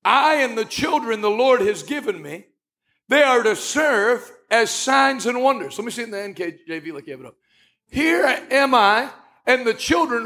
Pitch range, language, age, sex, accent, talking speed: 220-285 Hz, English, 60-79, male, American, 200 wpm